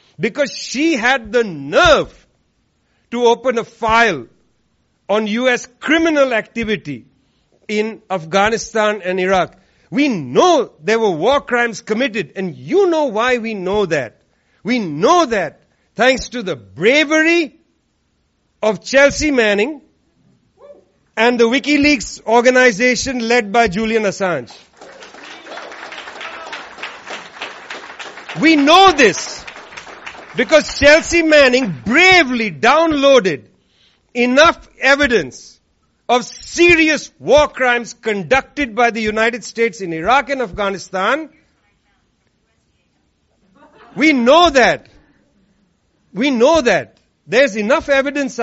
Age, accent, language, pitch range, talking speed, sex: 50-69, Indian, English, 210-280 Hz, 100 wpm, male